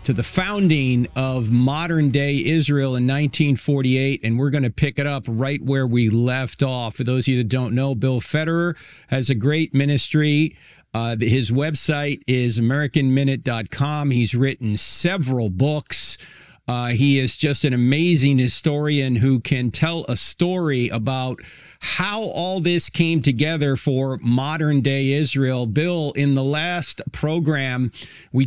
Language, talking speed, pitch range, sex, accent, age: English, 145 wpm, 130-155 Hz, male, American, 50-69